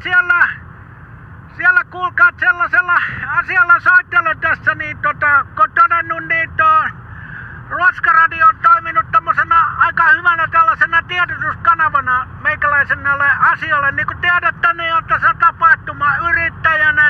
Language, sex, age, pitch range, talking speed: Finnish, male, 60-79, 295-350 Hz, 105 wpm